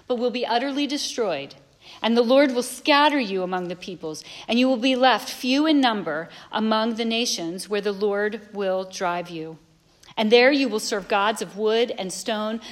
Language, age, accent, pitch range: English, 40-59, American, 185-255 Hz